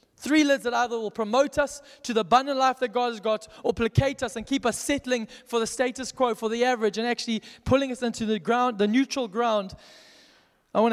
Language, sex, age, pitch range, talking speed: English, male, 20-39, 230-270 Hz, 225 wpm